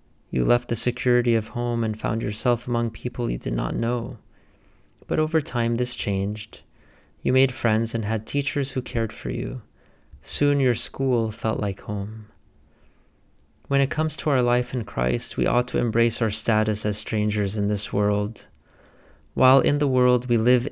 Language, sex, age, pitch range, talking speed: English, male, 30-49, 105-125 Hz, 175 wpm